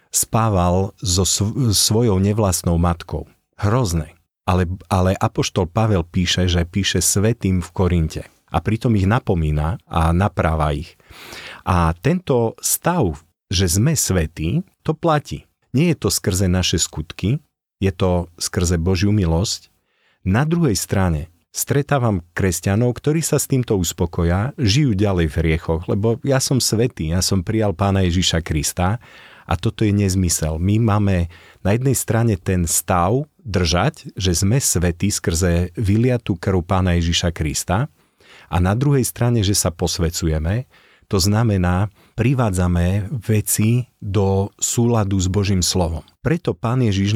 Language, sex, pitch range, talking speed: Slovak, male, 90-115 Hz, 135 wpm